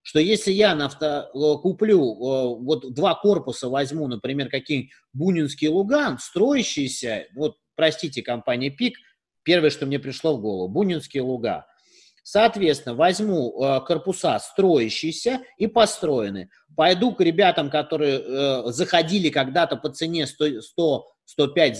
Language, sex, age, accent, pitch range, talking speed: Russian, male, 30-49, native, 145-210 Hz, 120 wpm